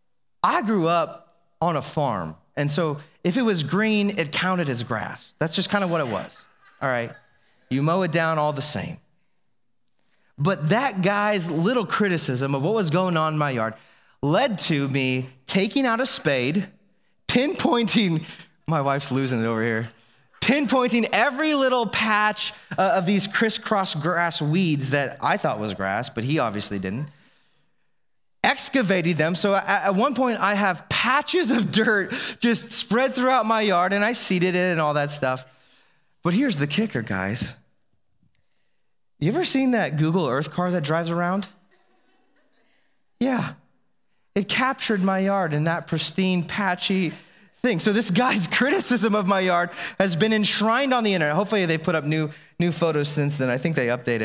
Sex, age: male, 30-49